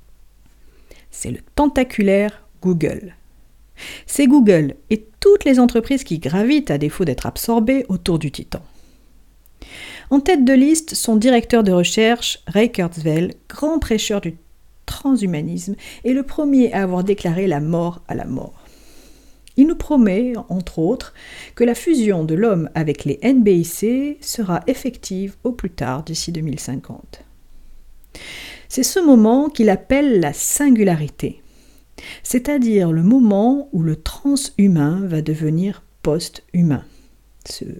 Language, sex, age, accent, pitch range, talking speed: French, female, 50-69, French, 165-255 Hz, 130 wpm